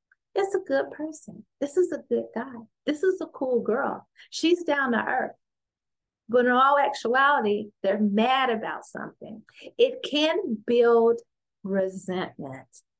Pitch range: 215-285 Hz